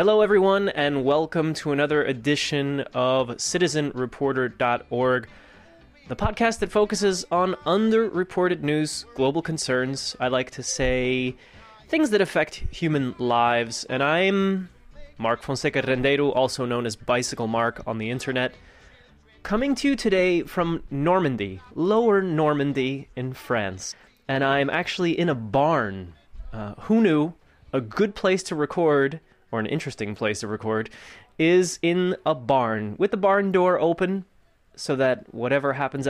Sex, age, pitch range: male, 20-39, 125-170 Hz